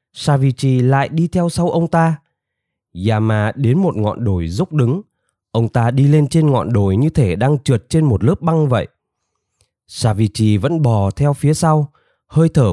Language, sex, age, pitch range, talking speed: Vietnamese, male, 20-39, 100-150 Hz, 180 wpm